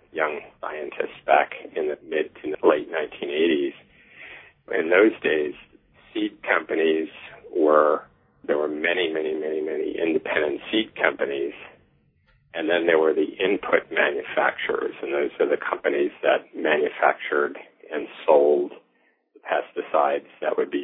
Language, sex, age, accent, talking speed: English, male, 50-69, American, 130 wpm